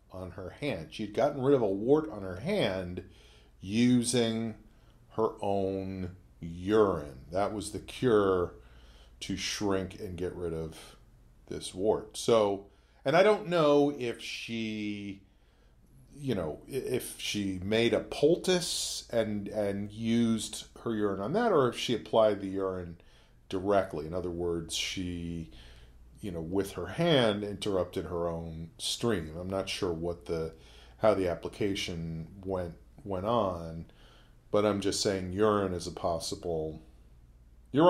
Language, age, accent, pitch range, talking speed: English, 40-59, American, 85-110 Hz, 140 wpm